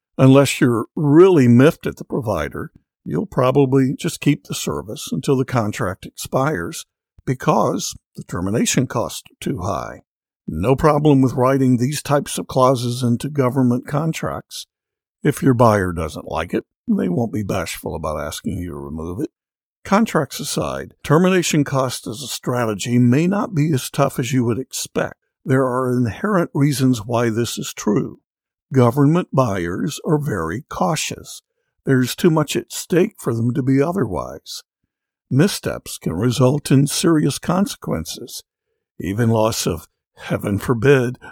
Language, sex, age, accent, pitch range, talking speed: English, male, 60-79, American, 120-155 Hz, 145 wpm